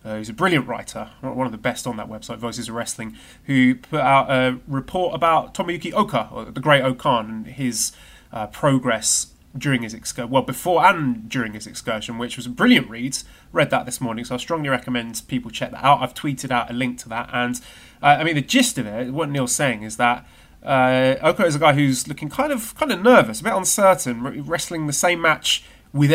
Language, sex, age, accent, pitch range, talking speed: English, male, 30-49, British, 120-155 Hz, 225 wpm